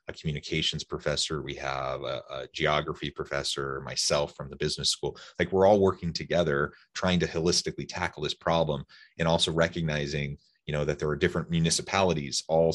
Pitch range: 75-85 Hz